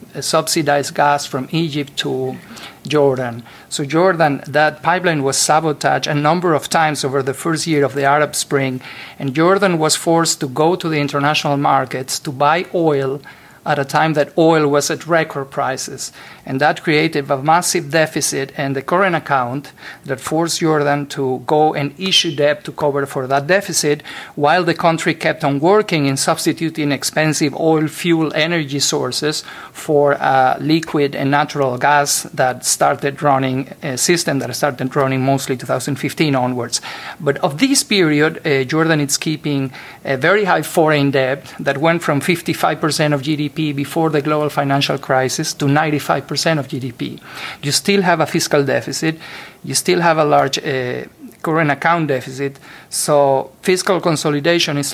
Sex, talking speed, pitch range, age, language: male, 160 wpm, 140-165 Hz, 50-69, English